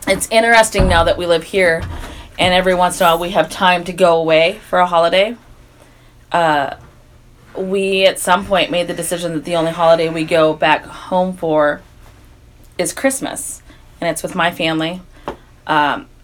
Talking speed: 175 wpm